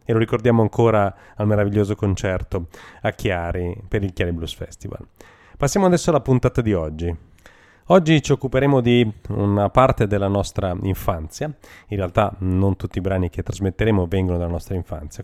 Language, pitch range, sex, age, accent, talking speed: Italian, 95-125 Hz, male, 30-49, native, 160 wpm